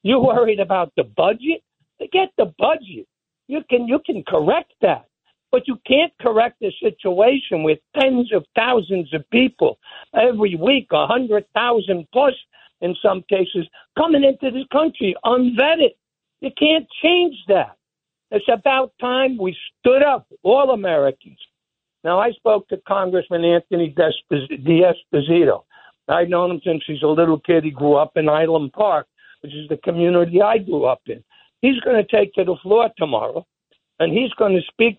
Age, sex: 60-79, male